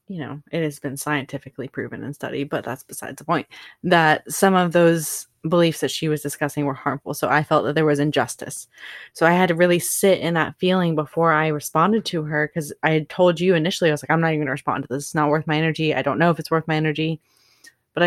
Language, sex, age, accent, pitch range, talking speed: English, female, 20-39, American, 145-165 Hz, 250 wpm